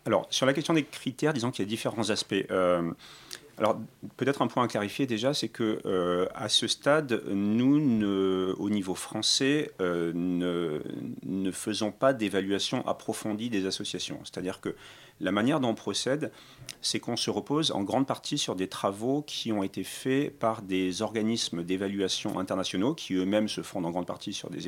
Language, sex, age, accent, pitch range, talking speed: French, male, 40-59, French, 95-125 Hz, 180 wpm